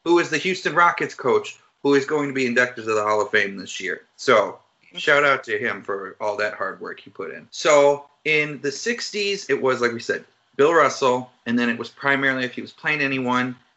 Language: English